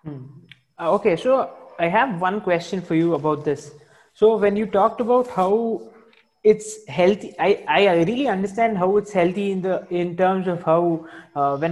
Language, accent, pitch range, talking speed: English, Indian, 165-210 Hz, 170 wpm